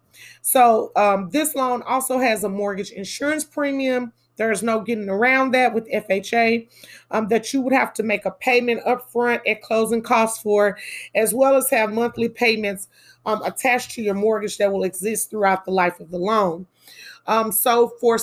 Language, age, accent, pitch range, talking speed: English, 30-49, American, 200-235 Hz, 185 wpm